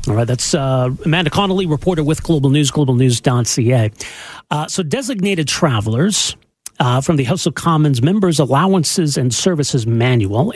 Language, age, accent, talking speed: English, 40-59, American, 155 wpm